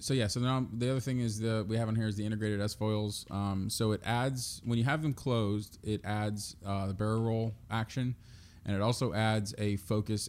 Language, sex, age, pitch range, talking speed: English, male, 20-39, 95-110 Hz, 235 wpm